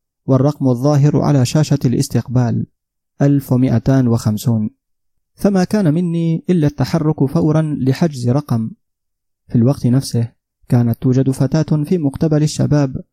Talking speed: 105 wpm